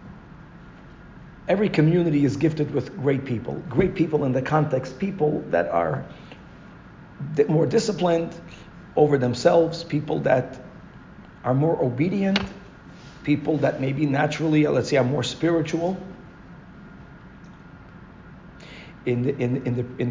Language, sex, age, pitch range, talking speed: English, male, 50-69, 135-170 Hz, 100 wpm